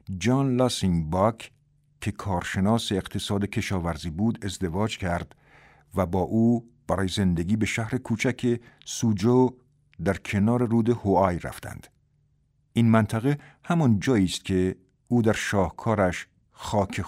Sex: male